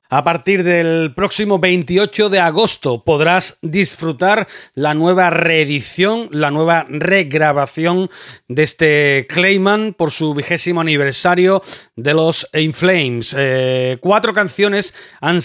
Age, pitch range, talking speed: 40-59, 150-185 Hz, 115 wpm